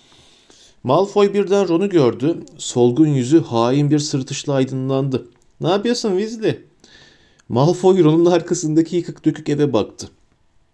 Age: 40-59